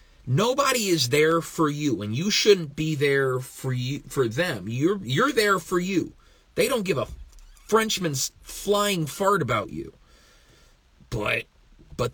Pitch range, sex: 115-160 Hz, male